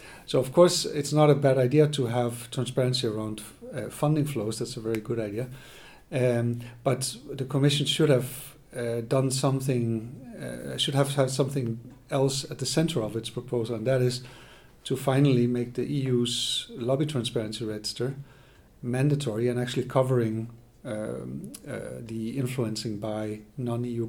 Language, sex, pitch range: English, male, 115-130 Hz